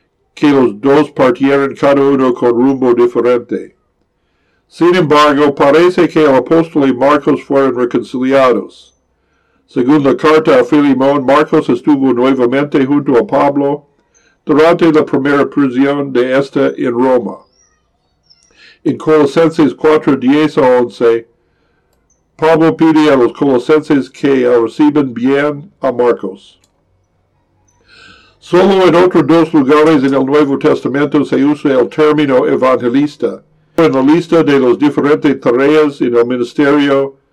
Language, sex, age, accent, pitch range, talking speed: Spanish, male, 60-79, American, 125-155 Hz, 125 wpm